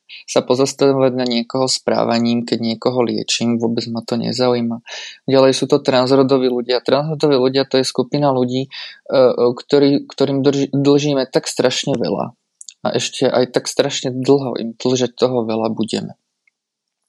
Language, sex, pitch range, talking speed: Slovak, male, 120-135 Hz, 150 wpm